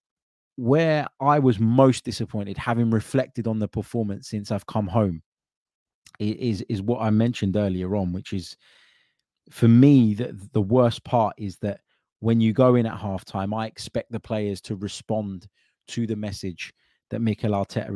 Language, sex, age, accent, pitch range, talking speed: English, male, 20-39, British, 100-115 Hz, 165 wpm